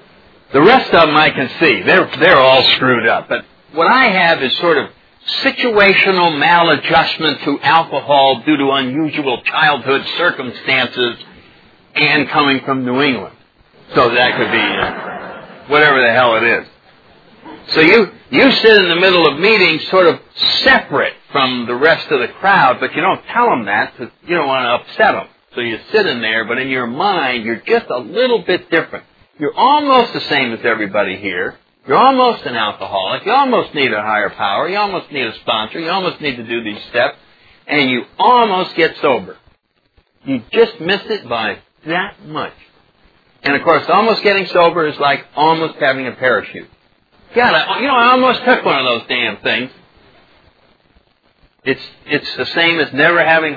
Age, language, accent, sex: 60-79, English, American, male